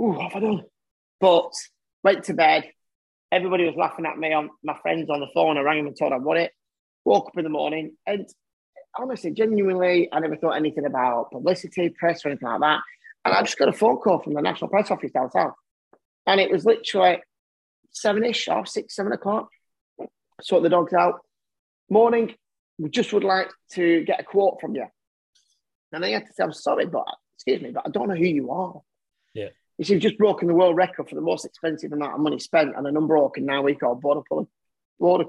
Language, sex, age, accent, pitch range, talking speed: English, male, 30-49, British, 155-210 Hz, 215 wpm